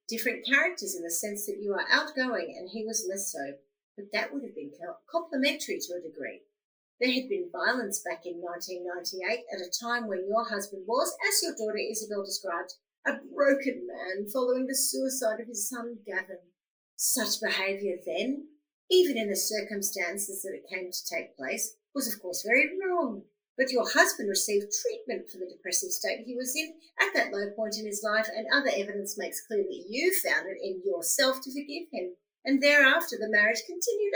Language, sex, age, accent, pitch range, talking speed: English, female, 50-69, Australian, 200-285 Hz, 190 wpm